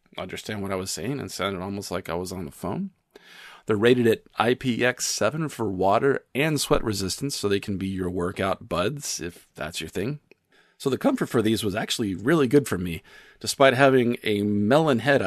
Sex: male